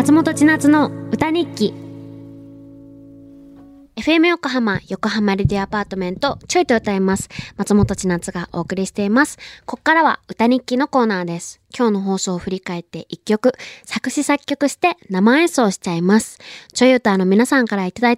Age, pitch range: 20-39, 175-235 Hz